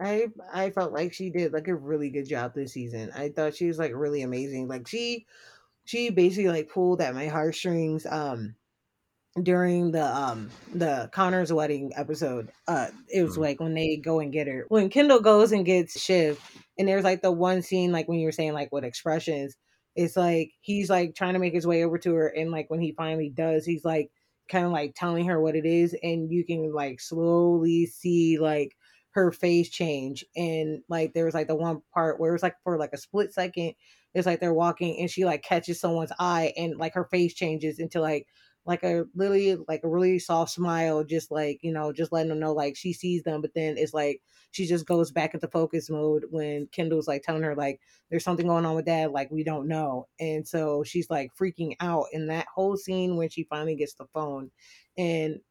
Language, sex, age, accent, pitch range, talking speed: English, female, 20-39, American, 155-175 Hz, 220 wpm